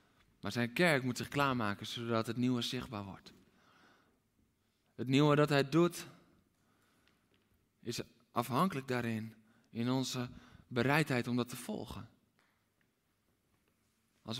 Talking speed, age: 115 wpm, 20-39